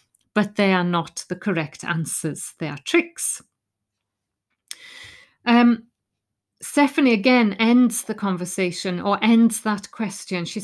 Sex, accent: female, British